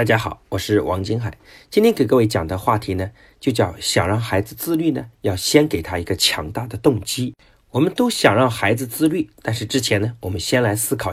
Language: Chinese